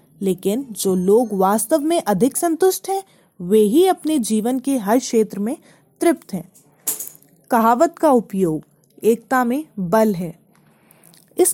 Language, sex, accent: English, female, Indian